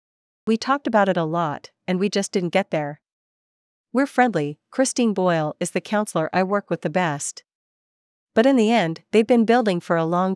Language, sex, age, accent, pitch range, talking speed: English, female, 40-59, American, 170-215 Hz, 195 wpm